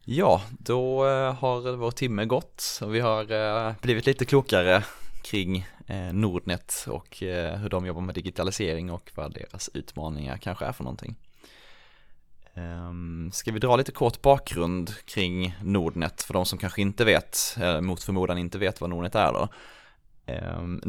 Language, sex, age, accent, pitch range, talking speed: Swedish, male, 20-39, native, 85-110 Hz, 145 wpm